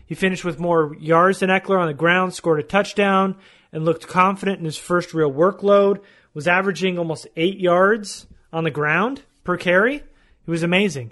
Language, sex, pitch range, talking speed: English, male, 160-195 Hz, 185 wpm